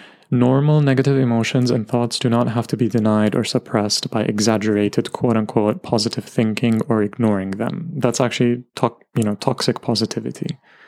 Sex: male